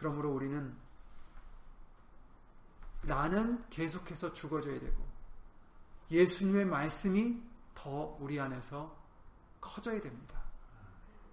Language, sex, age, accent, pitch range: Korean, male, 30-49, native, 130-185 Hz